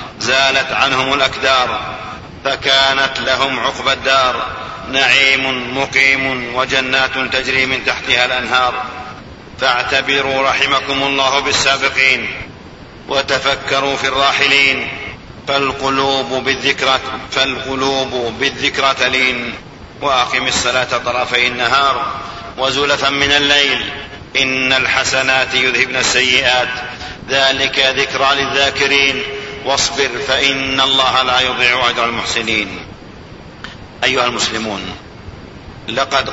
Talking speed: 80 wpm